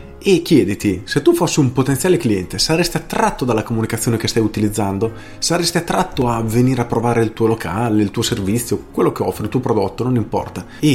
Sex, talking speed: male, 195 wpm